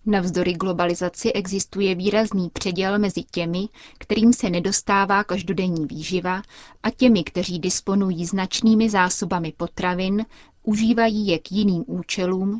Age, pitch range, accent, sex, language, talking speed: 30-49, 175-205 Hz, native, female, Czech, 120 wpm